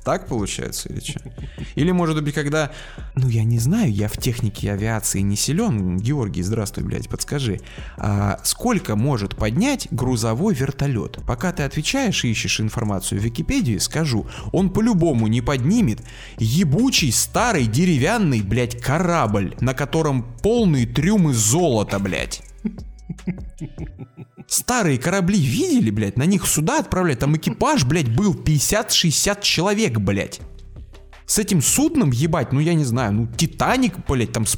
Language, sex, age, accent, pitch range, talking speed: Russian, male, 20-39, native, 110-170 Hz, 135 wpm